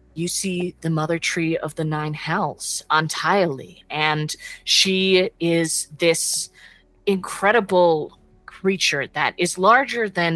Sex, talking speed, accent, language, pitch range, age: female, 115 wpm, American, English, 145-175 Hz, 20-39